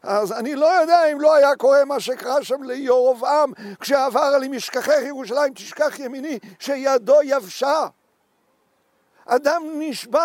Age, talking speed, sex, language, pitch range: 50-69, 130 wpm, male, Hebrew, 255-310 Hz